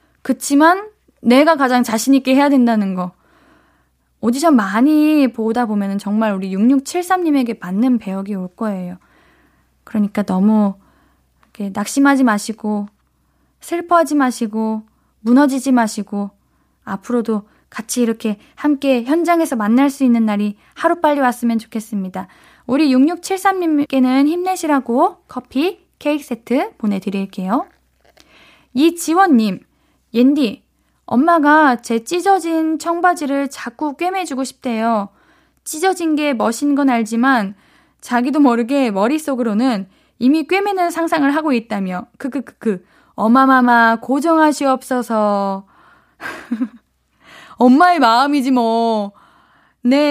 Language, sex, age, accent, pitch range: Korean, female, 20-39, native, 220-300 Hz